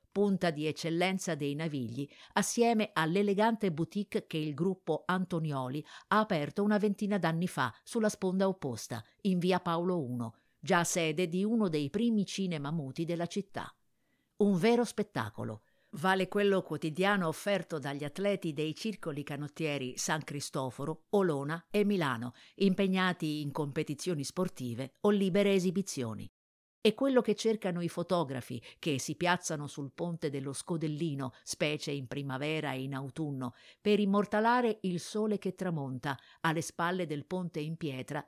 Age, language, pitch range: 50-69, Italian, 145-195 Hz